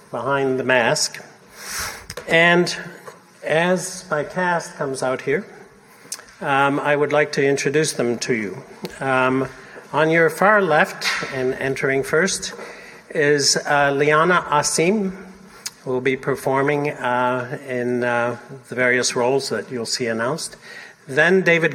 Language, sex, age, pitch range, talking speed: English, male, 60-79, 130-165 Hz, 130 wpm